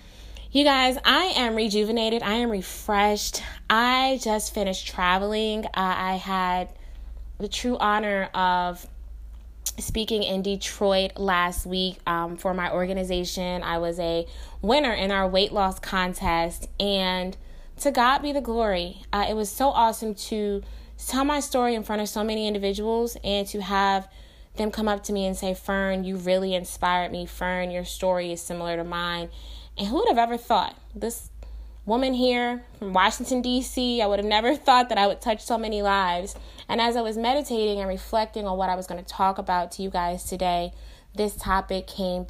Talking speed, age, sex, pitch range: 180 wpm, 20-39, female, 180-225 Hz